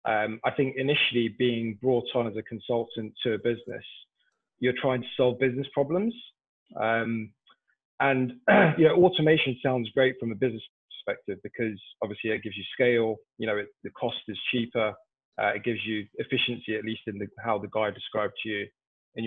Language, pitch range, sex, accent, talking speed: English, 110-130 Hz, male, British, 185 wpm